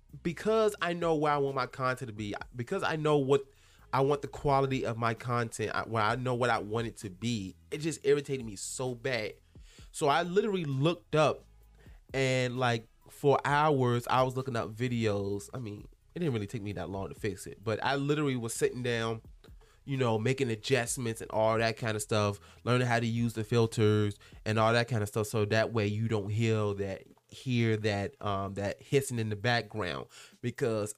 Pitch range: 105-140 Hz